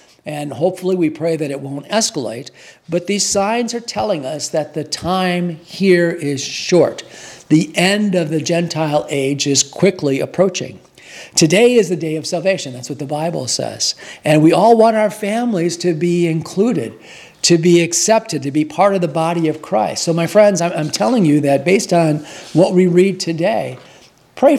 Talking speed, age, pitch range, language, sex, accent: 180 wpm, 50-69, 145-185 Hz, English, male, American